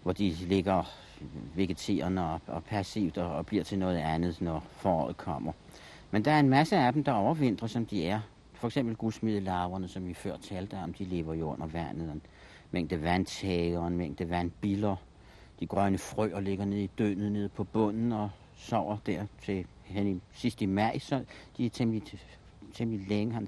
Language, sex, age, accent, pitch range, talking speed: Danish, male, 60-79, native, 95-120 Hz, 170 wpm